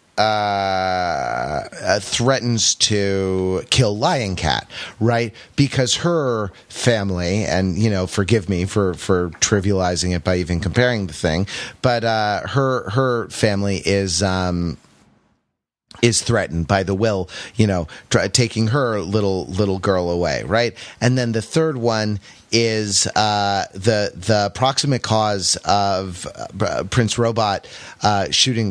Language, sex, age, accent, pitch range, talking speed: English, male, 30-49, American, 95-115 Hz, 135 wpm